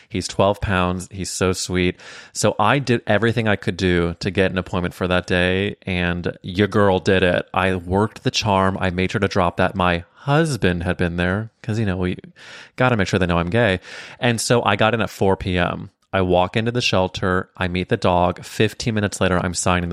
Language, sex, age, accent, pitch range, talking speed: English, male, 20-39, American, 95-115 Hz, 225 wpm